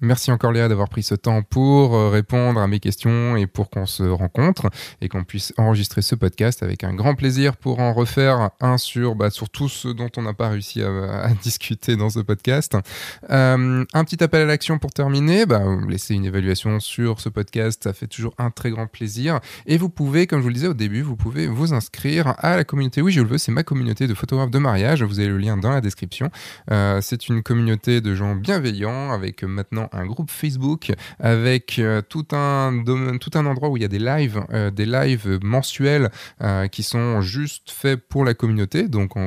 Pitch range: 105-135 Hz